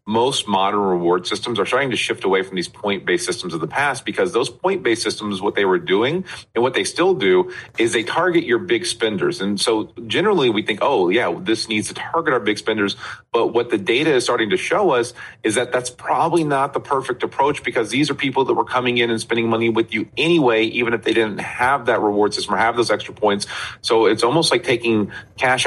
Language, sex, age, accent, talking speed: English, male, 40-59, American, 230 wpm